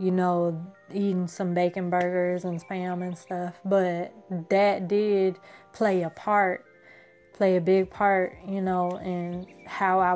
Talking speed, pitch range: 150 wpm, 180-195 Hz